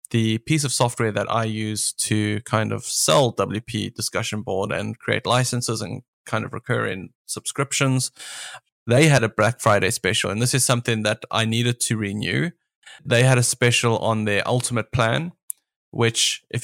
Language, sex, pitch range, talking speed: English, male, 110-125 Hz, 170 wpm